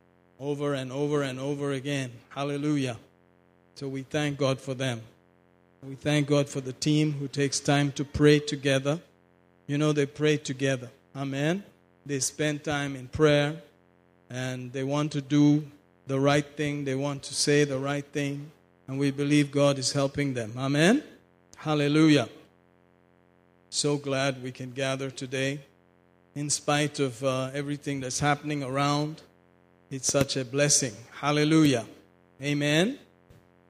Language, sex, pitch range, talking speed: English, male, 130-145 Hz, 140 wpm